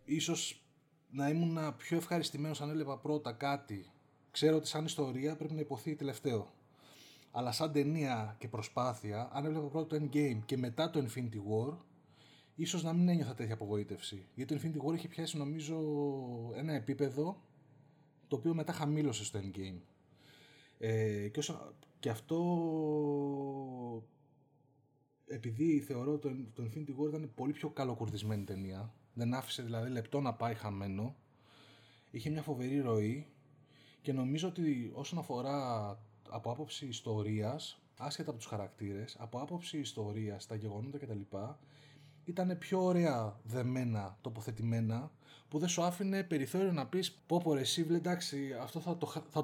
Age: 20-39